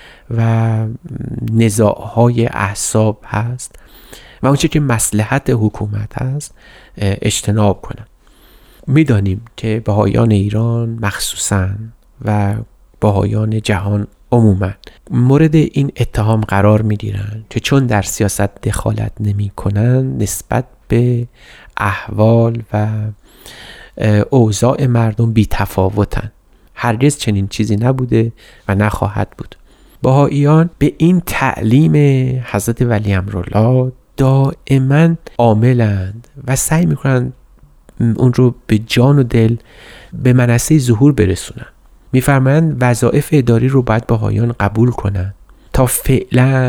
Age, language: 30-49, Persian